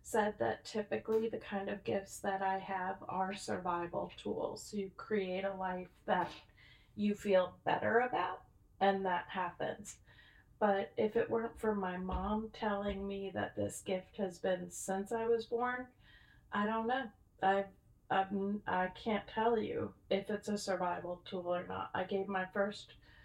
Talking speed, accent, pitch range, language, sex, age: 165 wpm, American, 190-215 Hz, English, female, 30-49